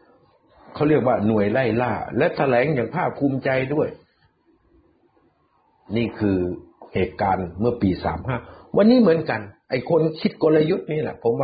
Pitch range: 95-140 Hz